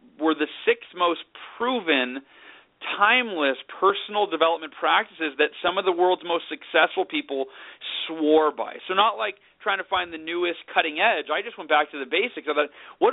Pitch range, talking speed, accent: 155-200 Hz, 185 wpm, American